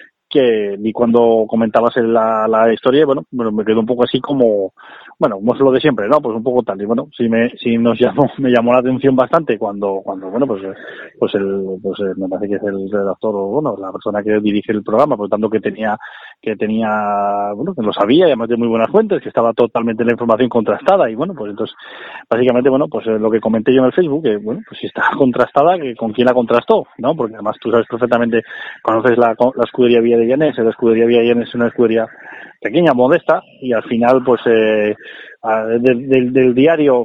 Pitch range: 110-125 Hz